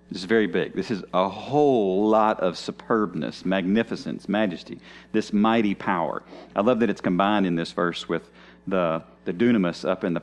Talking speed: 180 wpm